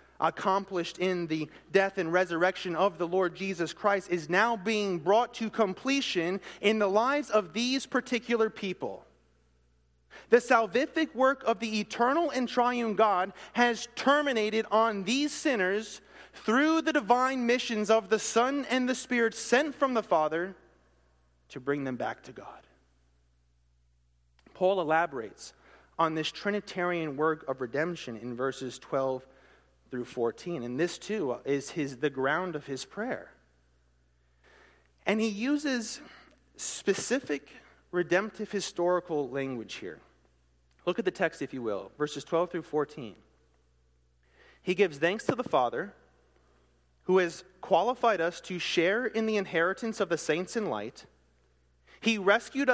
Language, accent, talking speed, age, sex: English, American, 140 wpm, 30-49, male